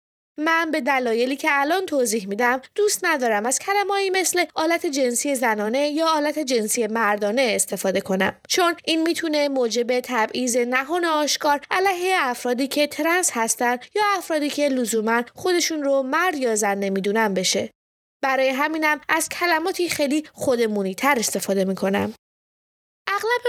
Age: 20-39